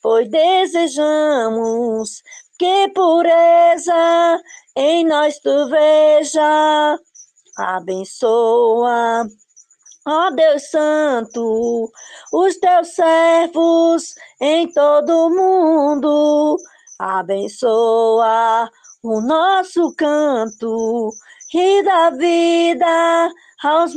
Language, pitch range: Portuguese, 230-335 Hz